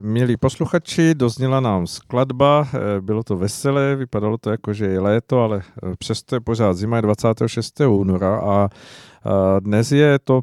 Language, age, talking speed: Czech, 50-69, 145 wpm